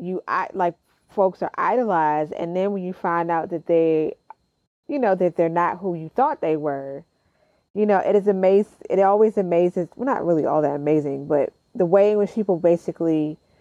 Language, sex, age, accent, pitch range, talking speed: English, female, 30-49, American, 165-230 Hz, 200 wpm